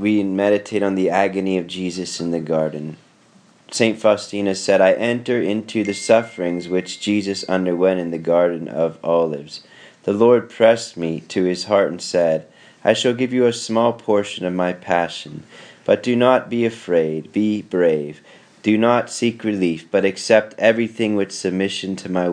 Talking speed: 170 wpm